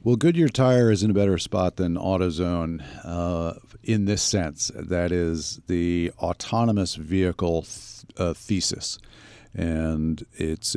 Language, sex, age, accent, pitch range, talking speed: English, male, 50-69, American, 80-105 Hz, 135 wpm